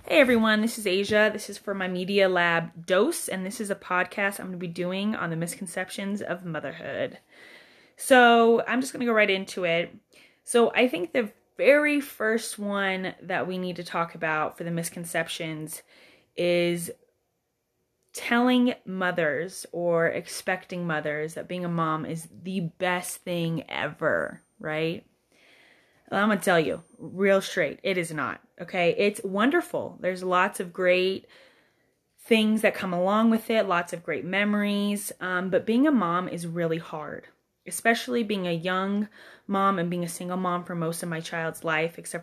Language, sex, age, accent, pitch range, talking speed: English, female, 20-39, American, 170-210 Hz, 170 wpm